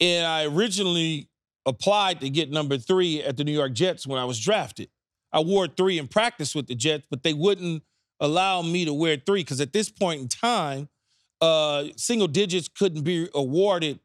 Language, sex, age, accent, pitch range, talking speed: English, male, 40-59, American, 145-195 Hz, 190 wpm